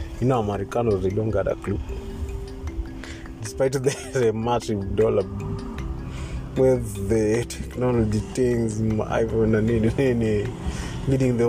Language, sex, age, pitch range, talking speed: Swahili, male, 20-39, 90-120 Hz, 130 wpm